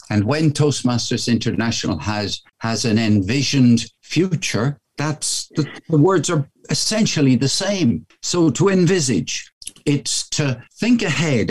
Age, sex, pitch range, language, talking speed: 60-79, male, 110-140 Hz, English, 125 wpm